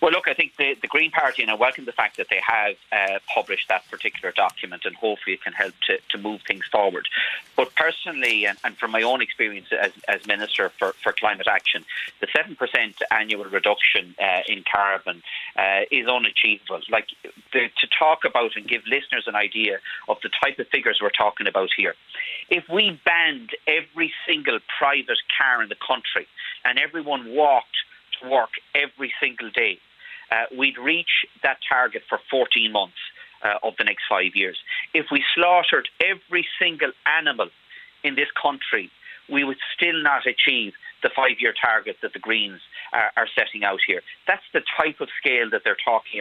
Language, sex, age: English, male, 40-59